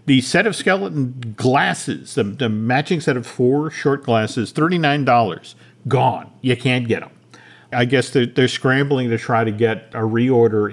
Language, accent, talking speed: English, American, 170 wpm